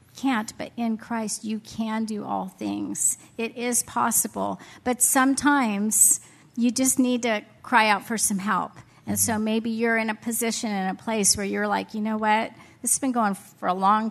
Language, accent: English, American